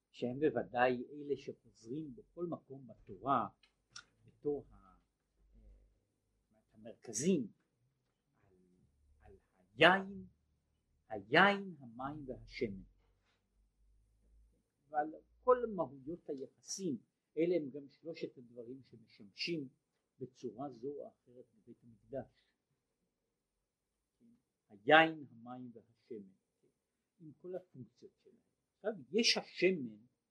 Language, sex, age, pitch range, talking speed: Hebrew, male, 50-69, 120-175 Hz, 80 wpm